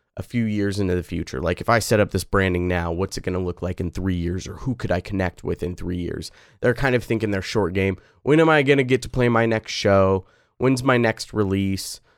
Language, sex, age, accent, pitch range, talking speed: English, male, 20-39, American, 105-130 Hz, 265 wpm